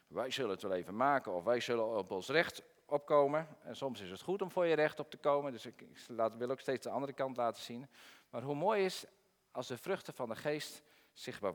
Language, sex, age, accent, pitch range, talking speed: Dutch, male, 40-59, Dutch, 110-145 Hz, 240 wpm